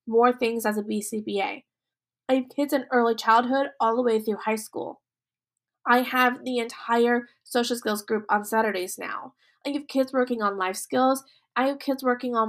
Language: English